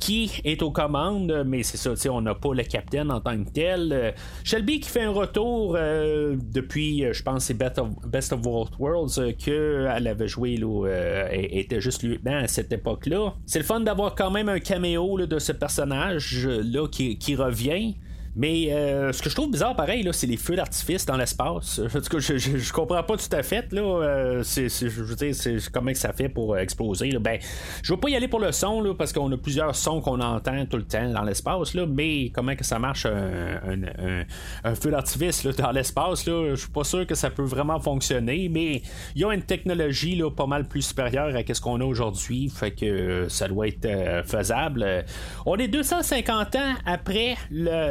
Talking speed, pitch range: 220 wpm, 120-170 Hz